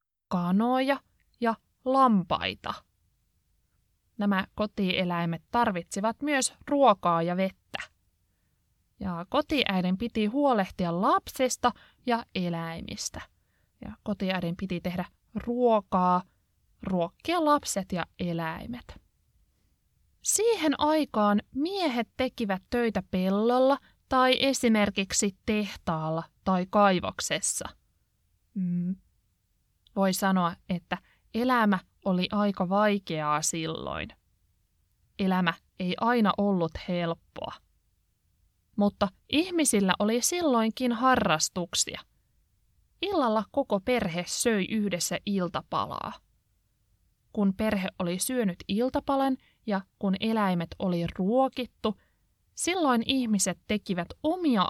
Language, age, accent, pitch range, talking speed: Finnish, 20-39, native, 175-240 Hz, 80 wpm